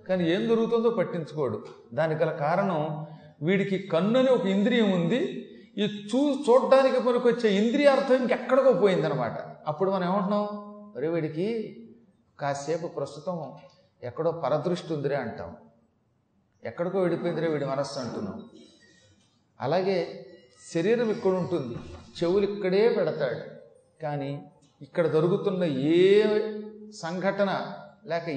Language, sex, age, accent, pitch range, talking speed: Telugu, male, 40-59, native, 165-215 Hz, 105 wpm